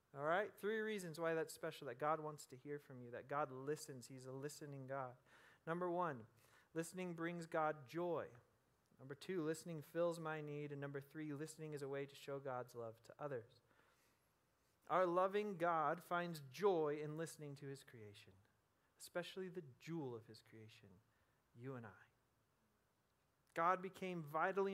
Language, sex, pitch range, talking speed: English, male, 130-170 Hz, 165 wpm